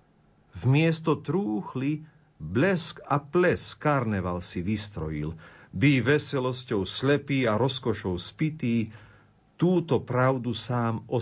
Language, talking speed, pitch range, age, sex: Slovak, 100 wpm, 100-130 Hz, 50-69, male